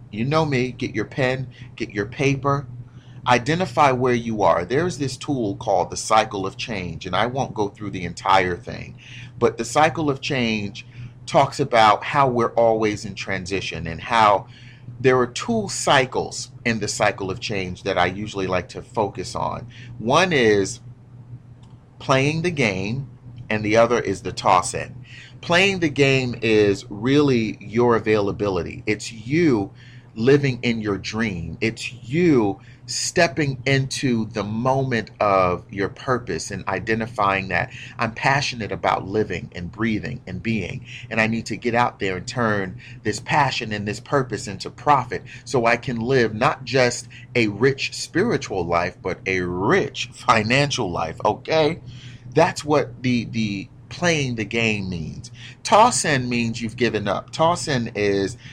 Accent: American